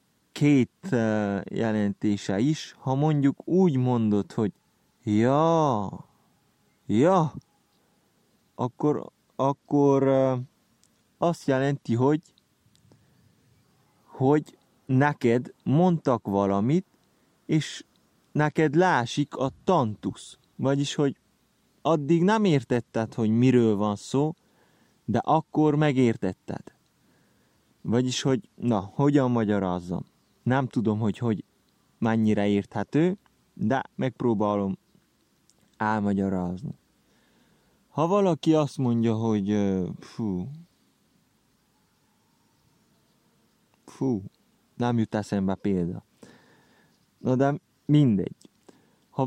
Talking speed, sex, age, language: 80 wpm, male, 30-49, Hungarian